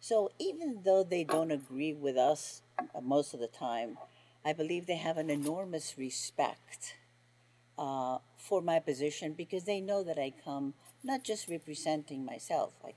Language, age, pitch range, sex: English, 50-69, 130-180 Hz, female